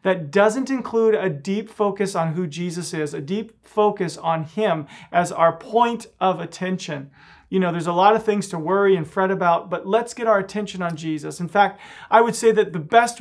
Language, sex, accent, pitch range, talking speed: English, male, American, 175-215 Hz, 215 wpm